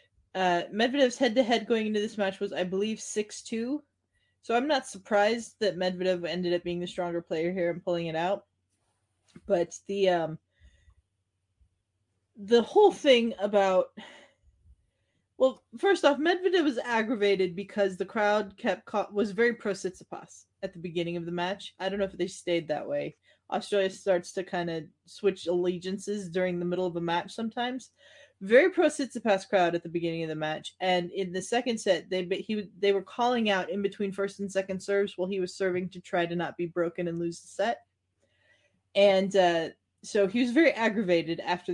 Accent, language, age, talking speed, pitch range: American, English, 20-39, 180 wpm, 175-225 Hz